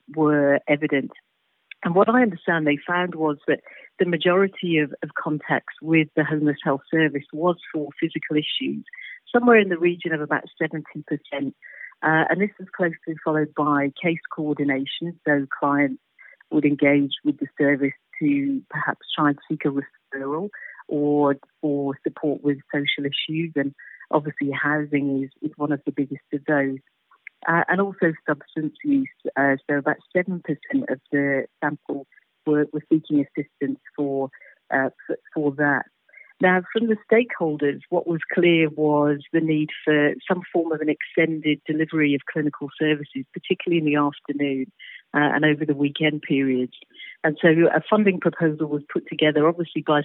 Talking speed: 155 wpm